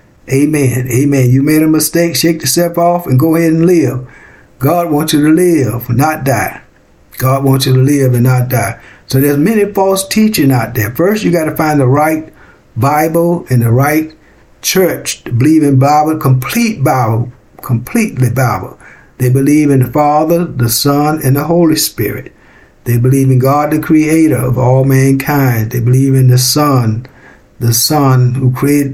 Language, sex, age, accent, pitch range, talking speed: English, male, 60-79, American, 125-150 Hz, 175 wpm